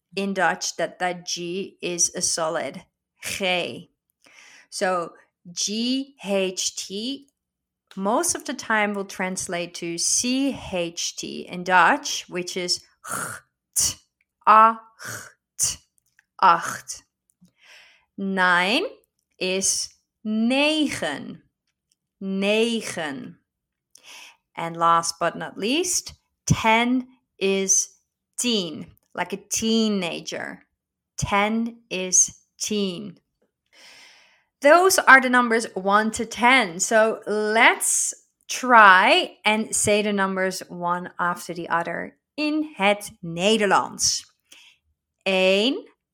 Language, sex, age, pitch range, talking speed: Dutch, female, 30-49, 180-230 Hz, 85 wpm